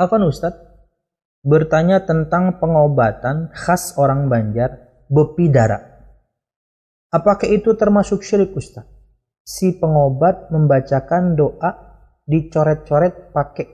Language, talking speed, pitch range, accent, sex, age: Indonesian, 90 wpm, 135-175 Hz, native, male, 30-49